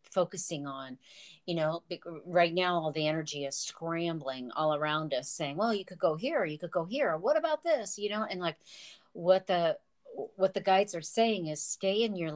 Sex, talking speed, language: female, 205 wpm, English